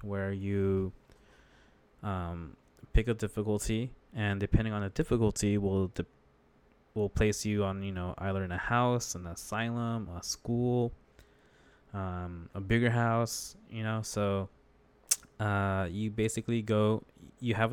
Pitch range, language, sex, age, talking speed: 95-110 Hz, English, male, 20-39, 135 wpm